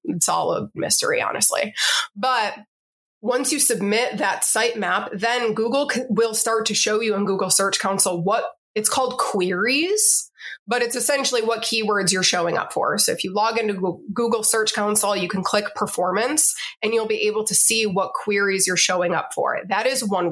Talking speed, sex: 185 wpm, female